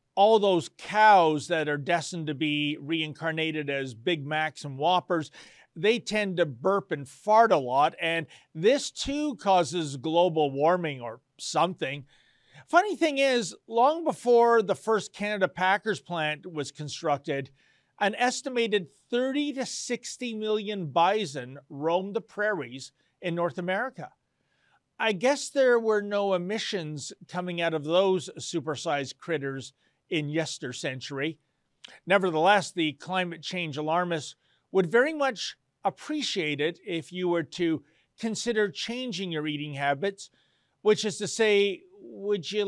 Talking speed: 130 wpm